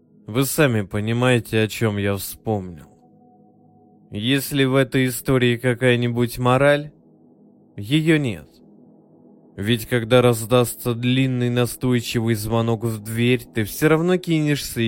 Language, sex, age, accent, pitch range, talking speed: Russian, male, 20-39, native, 110-145 Hz, 110 wpm